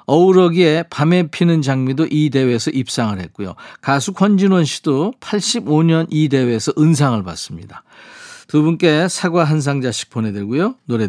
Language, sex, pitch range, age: Korean, male, 130-175 Hz, 40-59